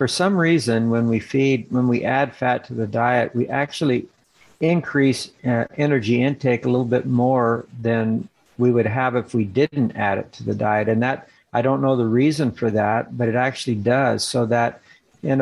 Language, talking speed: English, 200 wpm